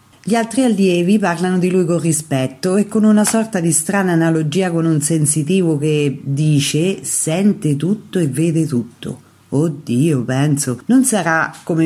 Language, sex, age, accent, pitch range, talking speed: Italian, female, 40-59, native, 140-185 Hz, 150 wpm